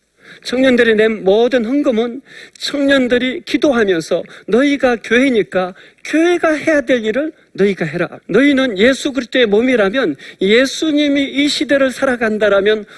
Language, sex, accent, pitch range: Korean, male, native, 195-275 Hz